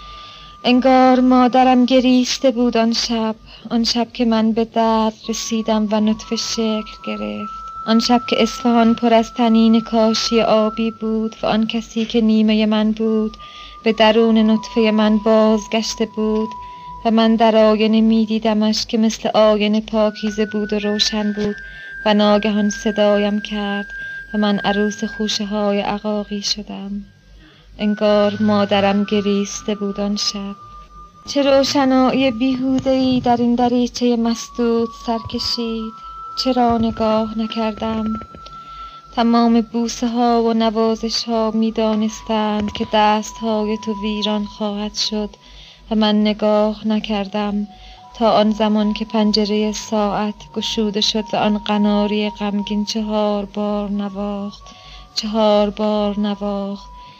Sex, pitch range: female, 210-230 Hz